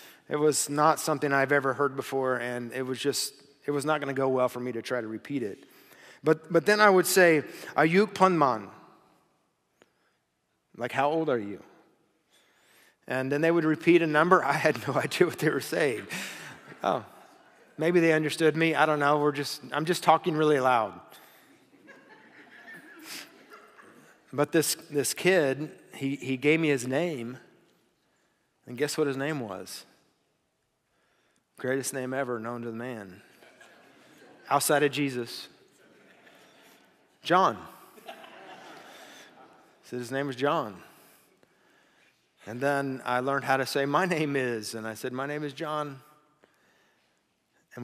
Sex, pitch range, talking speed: male, 125-155 Hz, 150 wpm